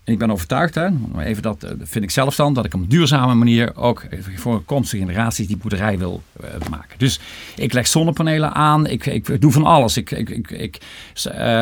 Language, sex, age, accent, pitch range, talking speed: English, male, 50-69, Dutch, 115-165 Hz, 215 wpm